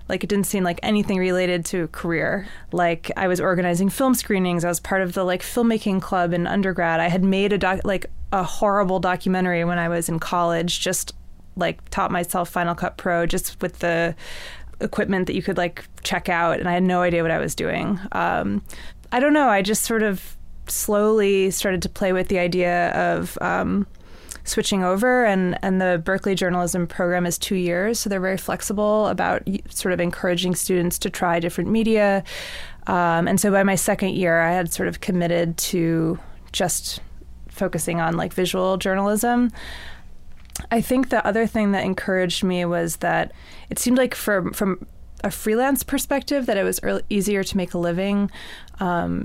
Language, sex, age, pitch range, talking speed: English, female, 20-39, 175-205 Hz, 185 wpm